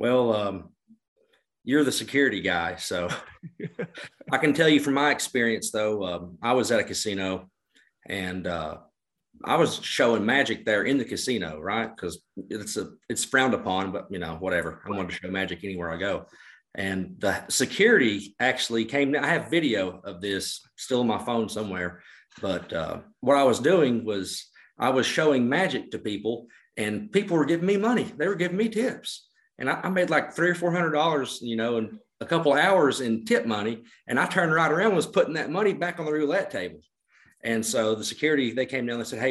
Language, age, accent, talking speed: English, 40-59, American, 200 wpm